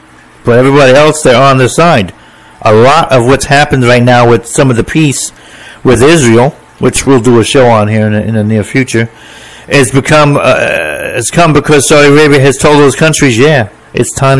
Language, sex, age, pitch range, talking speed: English, male, 50-69, 110-140 Hz, 200 wpm